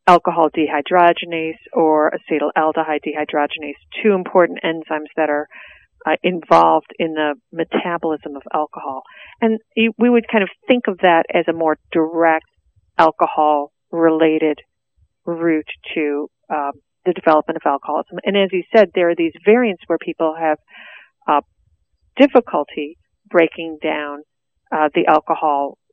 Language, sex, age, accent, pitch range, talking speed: English, female, 40-59, American, 150-190 Hz, 130 wpm